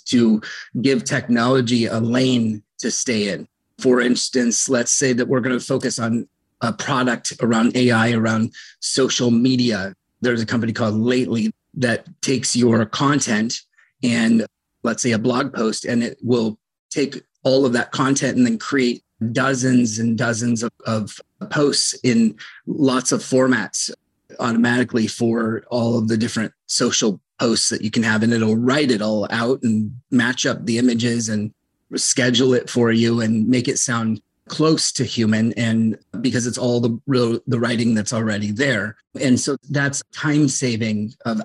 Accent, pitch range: American, 115-130 Hz